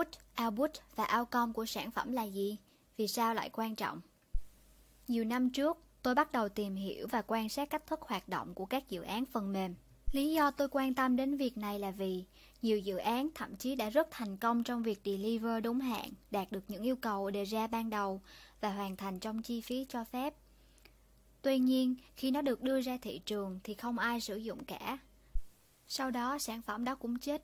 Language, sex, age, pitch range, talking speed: Vietnamese, male, 20-39, 205-260 Hz, 215 wpm